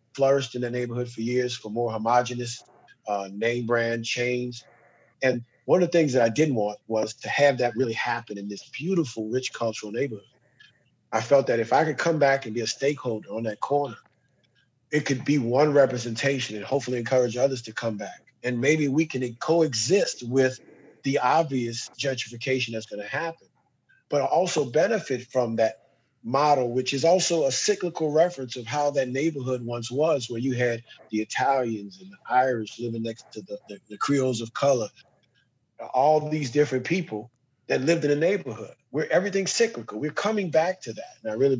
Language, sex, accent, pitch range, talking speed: English, male, American, 115-145 Hz, 185 wpm